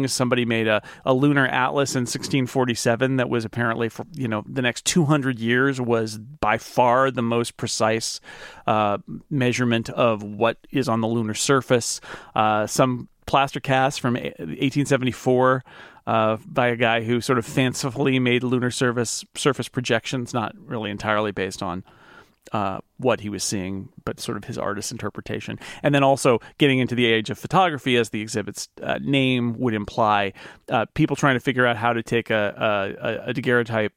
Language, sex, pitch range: English, male, 110-135 Hz